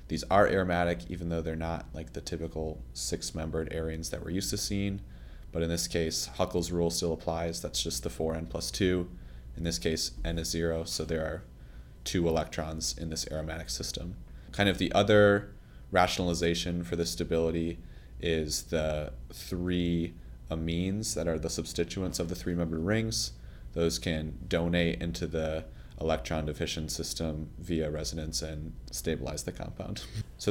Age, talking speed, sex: 30-49, 155 wpm, male